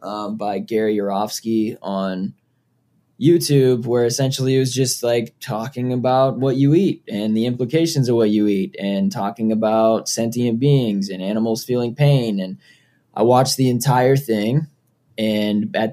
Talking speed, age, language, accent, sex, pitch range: 155 wpm, 10-29, English, American, male, 105-125 Hz